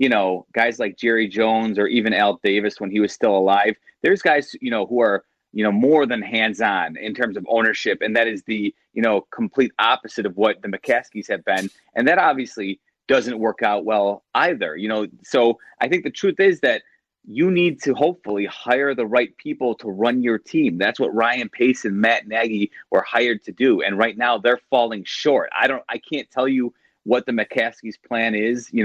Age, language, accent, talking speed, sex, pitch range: 30-49, English, American, 215 wpm, male, 110-140 Hz